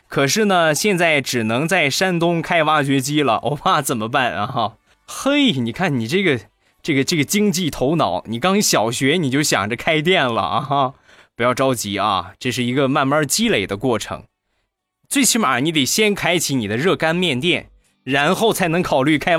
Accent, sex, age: native, male, 20-39